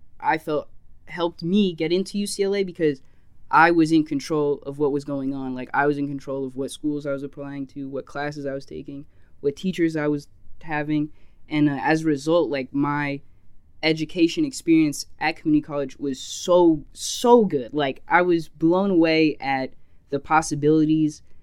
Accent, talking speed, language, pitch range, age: American, 175 wpm, English, 135-160 Hz, 10-29